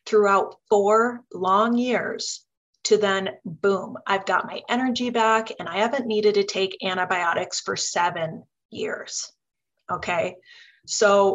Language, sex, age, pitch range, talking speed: English, female, 30-49, 180-220 Hz, 125 wpm